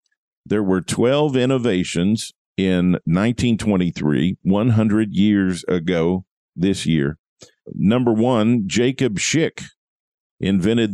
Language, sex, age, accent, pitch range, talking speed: English, male, 50-69, American, 90-125 Hz, 90 wpm